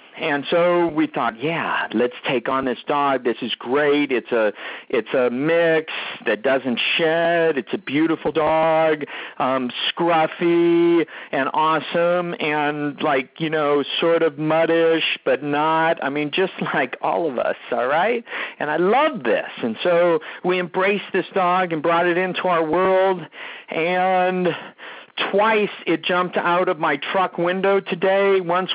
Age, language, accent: 50-69, English, American